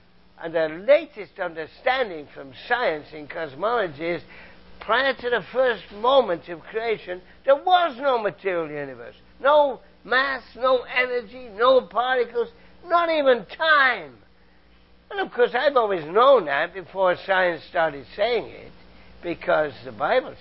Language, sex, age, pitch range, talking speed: English, male, 60-79, 135-220 Hz, 130 wpm